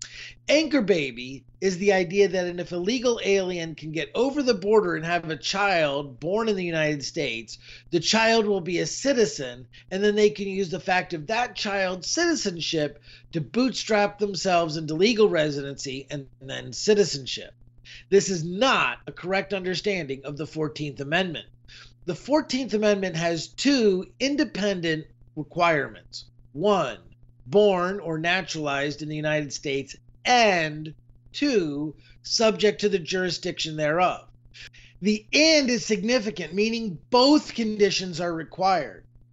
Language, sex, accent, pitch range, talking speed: English, male, American, 145-210 Hz, 140 wpm